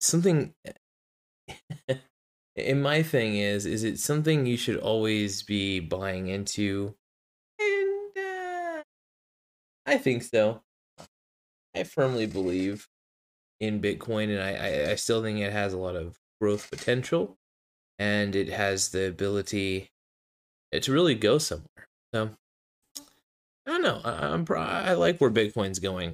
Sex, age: male, 20-39